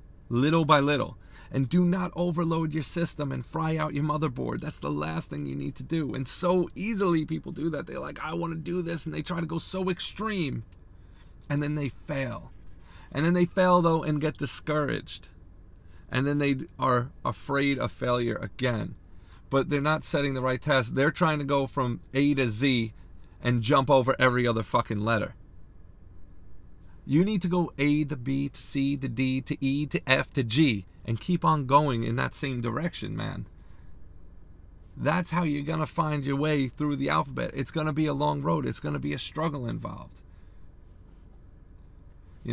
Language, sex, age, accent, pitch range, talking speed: English, male, 40-59, American, 110-155 Hz, 190 wpm